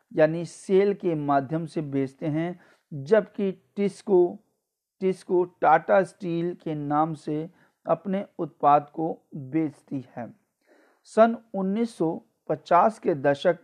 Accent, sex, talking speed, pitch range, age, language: native, male, 105 wpm, 155-195 Hz, 50-69, Hindi